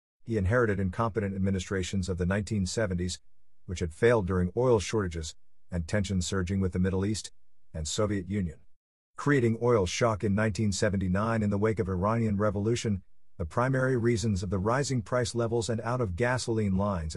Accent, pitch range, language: American, 95-120 Hz, English